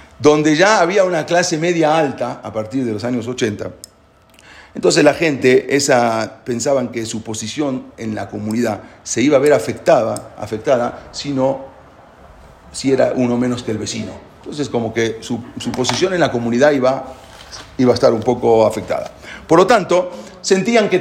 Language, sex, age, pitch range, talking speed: English, male, 40-59, 120-175 Hz, 170 wpm